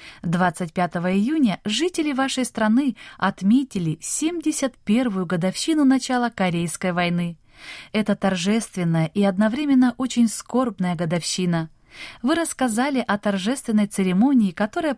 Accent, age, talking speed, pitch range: native, 20-39, 95 wpm, 165-225 Hz